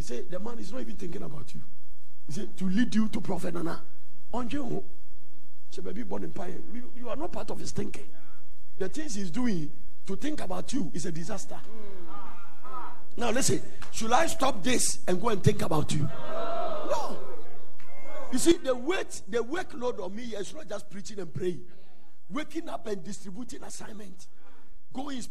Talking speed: 170 wpm